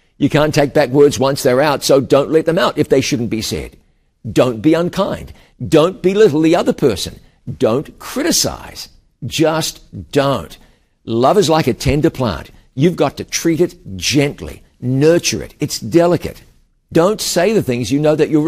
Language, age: English, 50-69